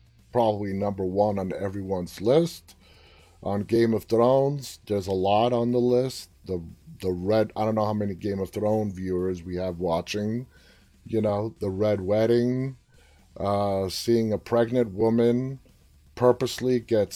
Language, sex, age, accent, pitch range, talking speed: English, male, 30-49, American, 95-125 Hz, 150 wpm